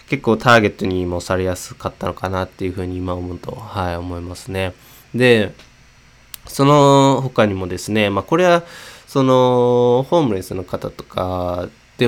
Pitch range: 95-125 Hz